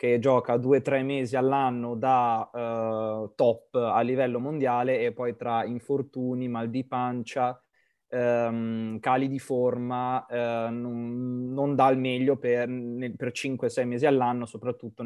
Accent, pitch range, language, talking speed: native, 115-130 Hz, Italian, 145 wpm